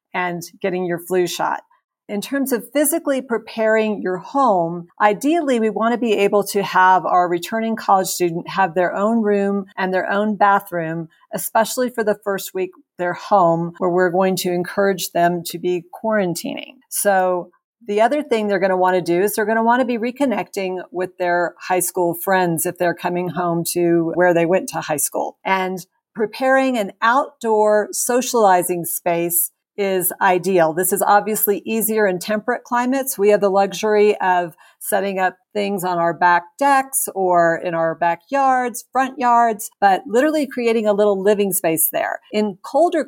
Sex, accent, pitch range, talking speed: female, American, 180-235 Hz, 175 wpm